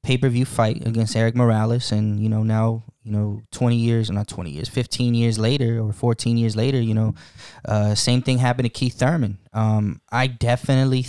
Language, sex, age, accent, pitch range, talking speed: English, male, 20-39, American, 110-130 Hz, 195 wpm